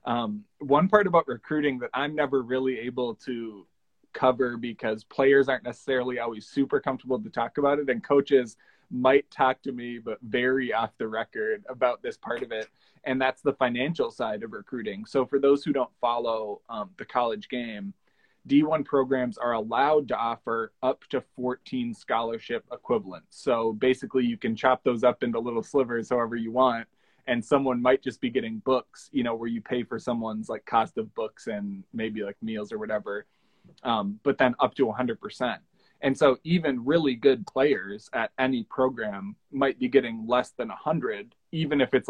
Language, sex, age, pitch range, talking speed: English, male, 20-39, 115-140 Hz, 180 wpm